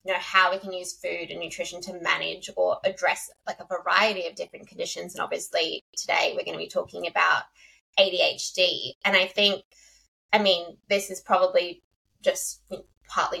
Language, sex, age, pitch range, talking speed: English, female, 20-39, 180-210 Hz, 175 wpm